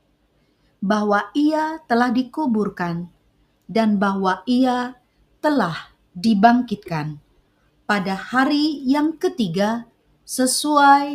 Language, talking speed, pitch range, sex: Indonesian, 75 wpm, 205-285 Hz, female